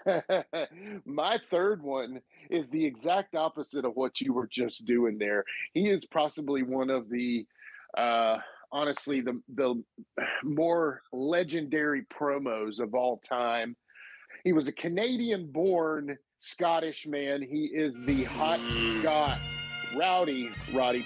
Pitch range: 130-170 Hz